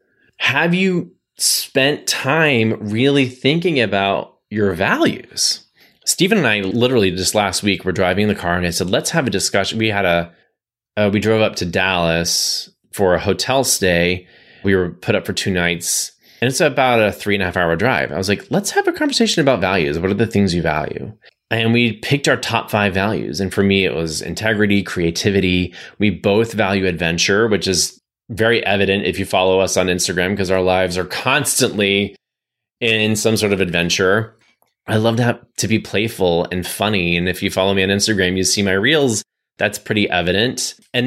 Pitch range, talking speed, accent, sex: 90-115 Hz, 195 wpm, American, male